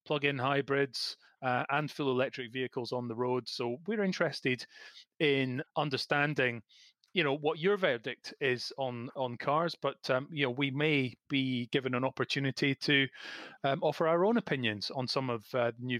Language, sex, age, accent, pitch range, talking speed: English, male, 30-49, British, 120-145 Hz, 175 wpm